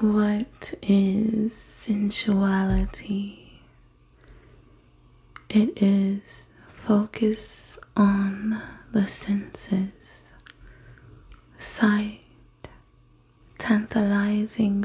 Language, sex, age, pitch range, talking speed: English, female, 20-39, 170-205 Hz, 45 wpm